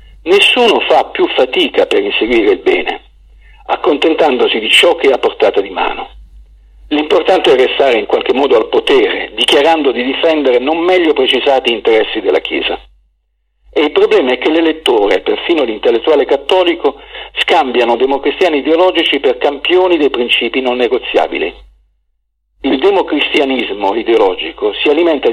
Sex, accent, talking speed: male, native, 135 wpm